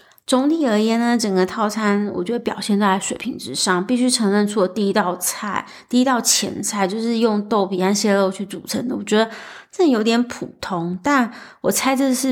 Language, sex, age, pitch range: Chinese, female, 30-49, 190-240 Hz